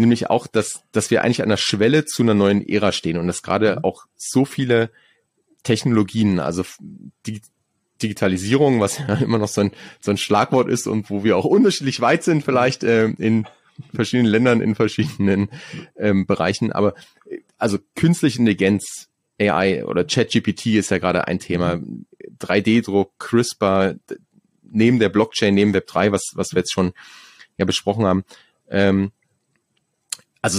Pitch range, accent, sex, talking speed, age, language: 95-125 Hz, German, male, 155 wpm, 30-49, German